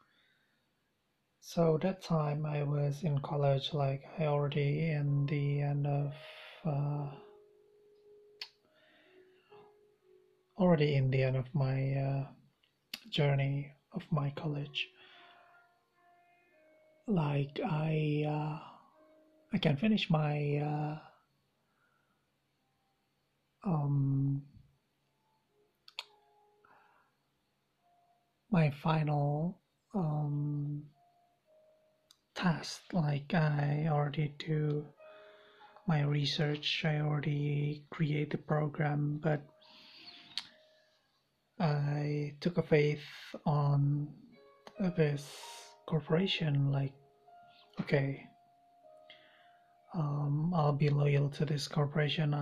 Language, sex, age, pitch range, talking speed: English, male, 30-49, 145-210 Hz, 75 wpm